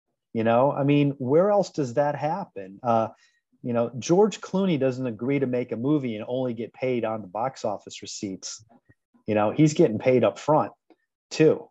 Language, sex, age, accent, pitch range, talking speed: English, male, 30-49, American, 115-150 Hz, 190 wpm